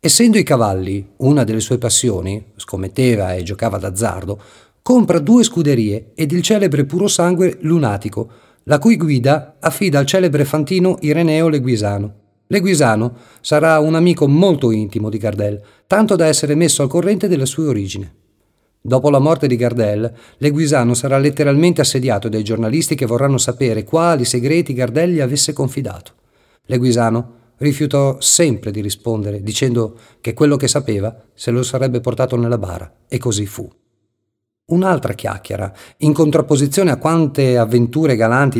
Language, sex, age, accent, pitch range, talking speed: Italian, male, 50-69, native, 110-155 Hz, 145 wpm